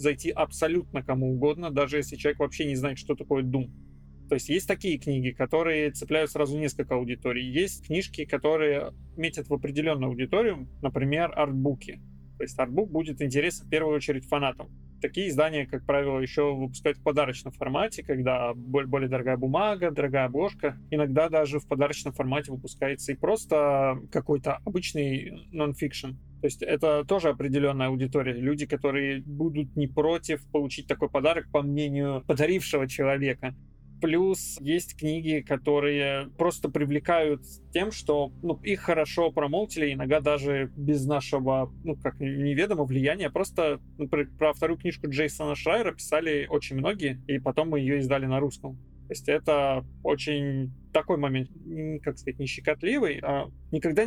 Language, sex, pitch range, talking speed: Russian, male, 135-155 Hz, 150 wpm